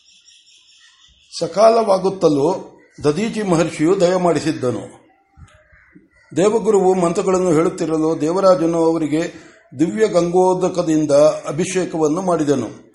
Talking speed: 60 wpm